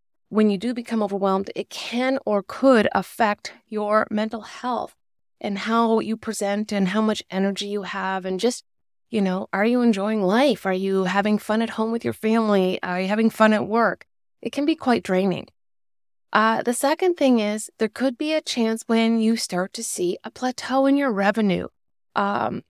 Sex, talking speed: female, 190 wpm